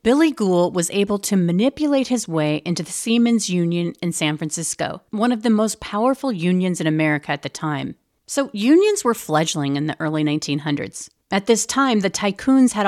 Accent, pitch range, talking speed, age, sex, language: American, 170-230 Hz, 185 wpm, 40-59, female, English